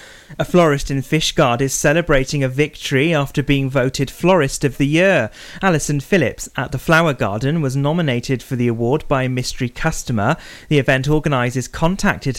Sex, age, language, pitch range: male, 30-49, English, 125-160 Hz